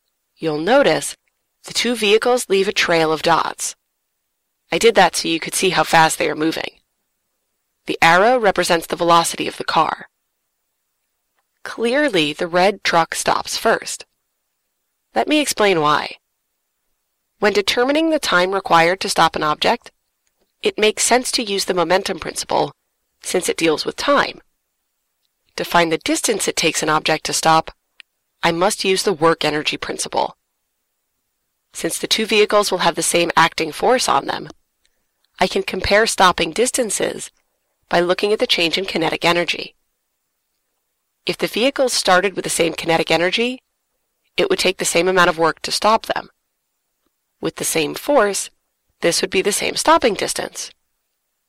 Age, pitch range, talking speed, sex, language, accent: 30-49, 165-215 Hz, 155 wpm, female, English, American